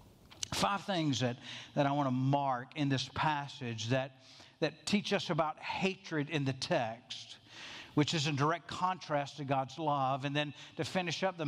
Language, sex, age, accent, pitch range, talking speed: English, male, 50-69, American, 140-195 Hz, 180 wpm